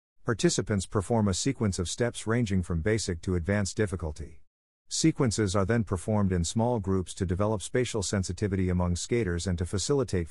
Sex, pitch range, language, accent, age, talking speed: male, 90-110 Hz, English, American, 50-69, 165 wpm